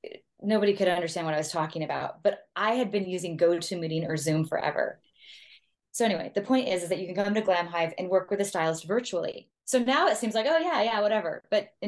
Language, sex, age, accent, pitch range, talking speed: English, female, 20-39, American, 175-235 Hz, 240 wpm